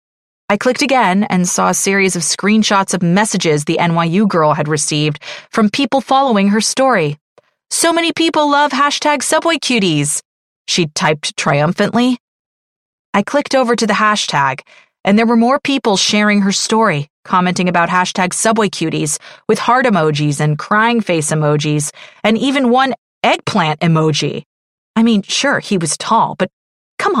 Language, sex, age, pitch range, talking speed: English, female, 30-49, 170-245 Hz, 155 wpm